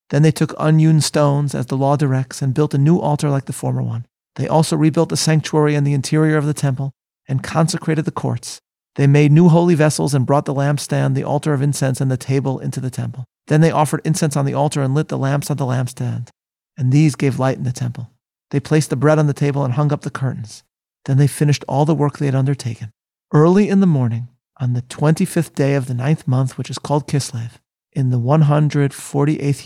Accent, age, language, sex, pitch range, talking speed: American, 40-59, English, male, 130-155 Hz, 235 wpm